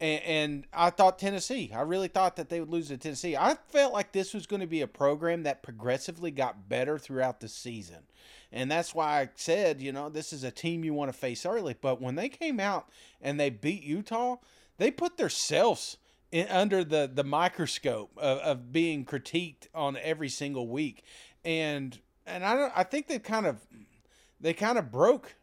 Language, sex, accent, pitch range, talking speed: English, male, American, 145-190 Hz, 195 wpm